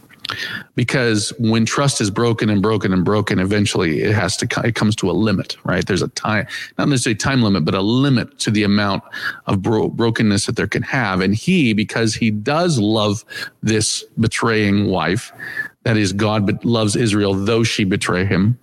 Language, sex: English, male